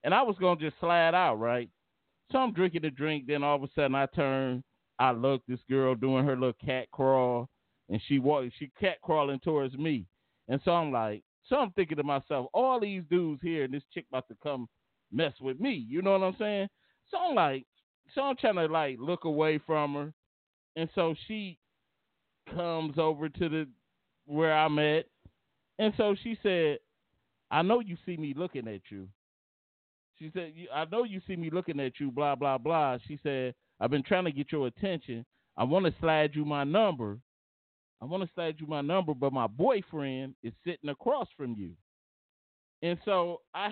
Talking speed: 200 wpm